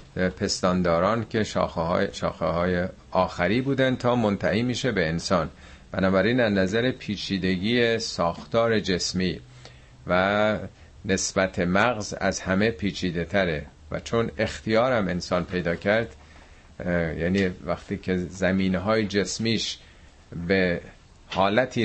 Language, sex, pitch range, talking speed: Persian, male, 85-105 Hz, 105 wpm